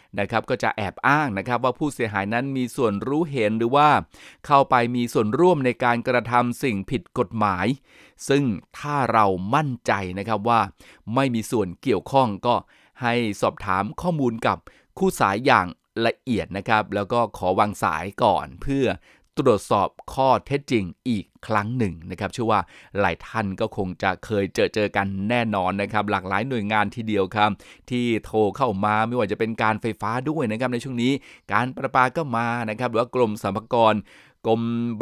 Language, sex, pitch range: Thai, male, 105-130 Hz